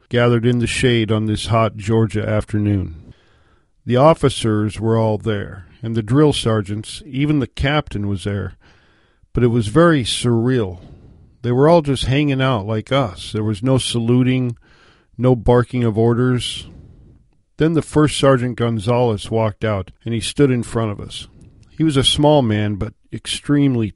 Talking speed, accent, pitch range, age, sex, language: 165 wpm, American, 105-130 Hz, 50-69, male, English